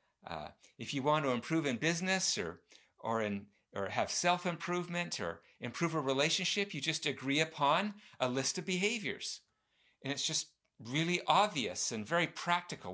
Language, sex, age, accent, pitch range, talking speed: English, male, 50-69, American, 135-175 Hz, 150 wpm